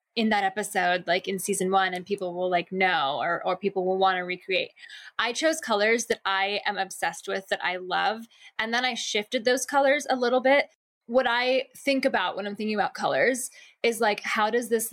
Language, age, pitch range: English, 10-29, 195-240 Hz